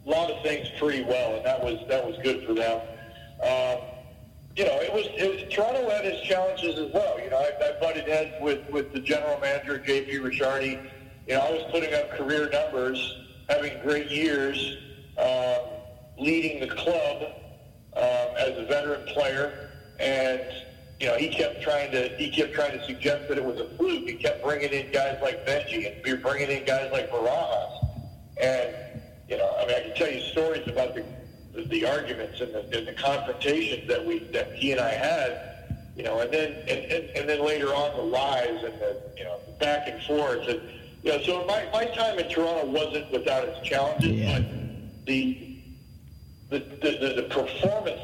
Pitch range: 130-160 Hz